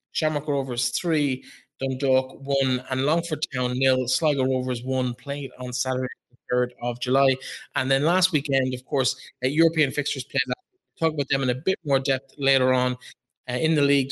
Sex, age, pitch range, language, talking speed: male, 20-39, 130-150 Hz, English, 190 wpm